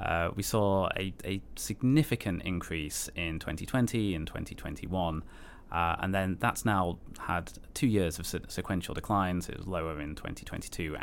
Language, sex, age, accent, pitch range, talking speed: English, male, 30-49, British, 80-100 Hz, 150 wpm